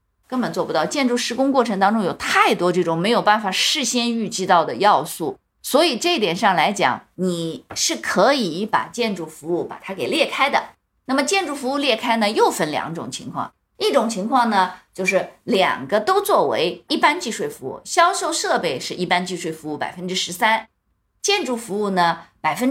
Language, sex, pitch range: Chinese, female, 185-255 Hz